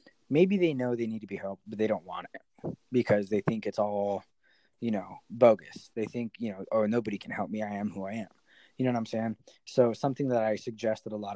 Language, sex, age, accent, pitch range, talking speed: English, male, 20-39, American, 105-120 Hz, 250 wpm